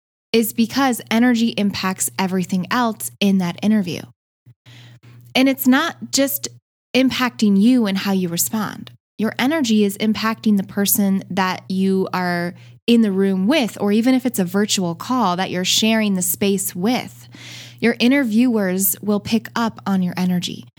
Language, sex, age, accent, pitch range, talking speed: English, female, 10-29, American, 175-225 Hz, 155 wpm